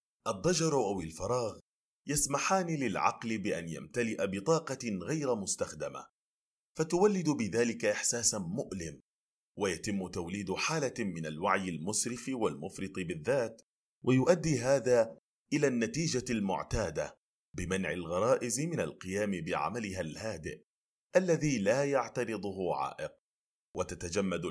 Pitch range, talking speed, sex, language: 95-140 Hz, 95 wpm, male, Arabic